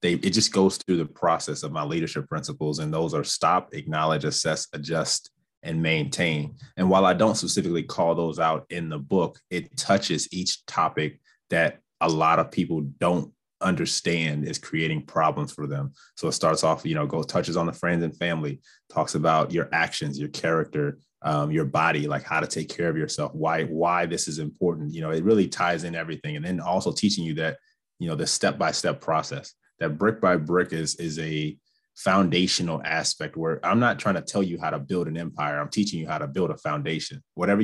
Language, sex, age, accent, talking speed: English, male, 30-49, American, 205 wpm